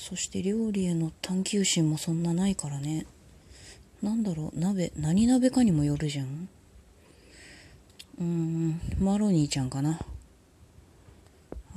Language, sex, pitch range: Japanese, female, 125-190 Hz